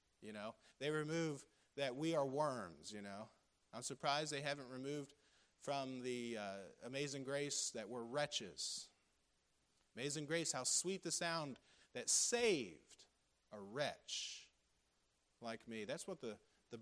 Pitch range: 135-170 Hz